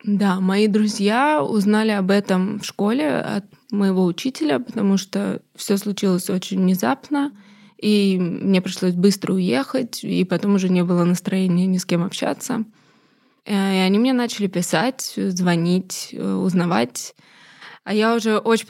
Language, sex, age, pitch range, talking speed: Russian, female, 20-39, 190-235 Hz, 140 wpm